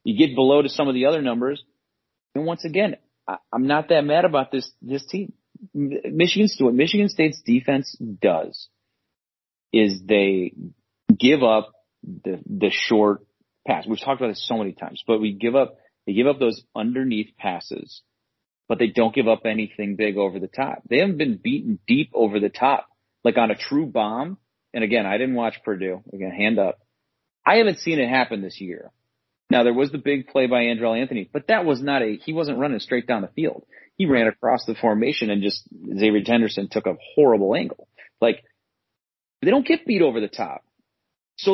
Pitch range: 105-155 Hz